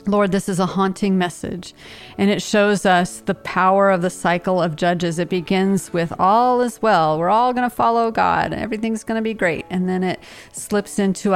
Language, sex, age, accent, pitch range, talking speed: English, female, 40-59, American, 180-215 Hz, 205 wpm